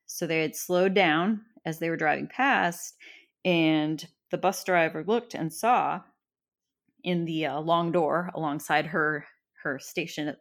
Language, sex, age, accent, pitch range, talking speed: English, female, 30-49, American, 155-180 Hz, 155 wpm